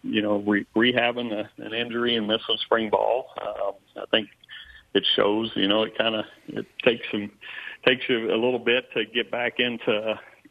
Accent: American